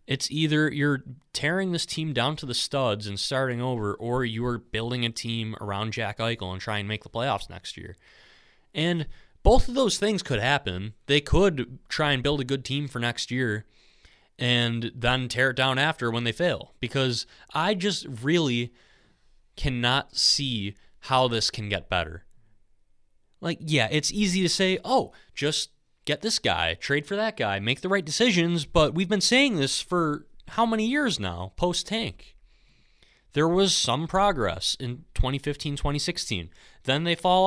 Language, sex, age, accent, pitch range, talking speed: English, male, 20-39, American, 115-160 Hz, 175 wpm